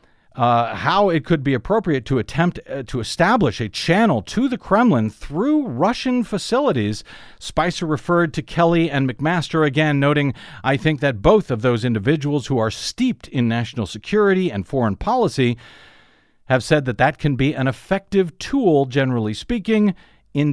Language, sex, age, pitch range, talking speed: English, male, 50-69, 130-185 Hz, 160 wpm